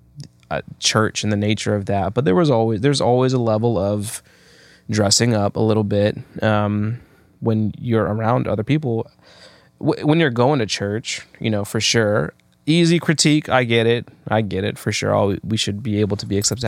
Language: English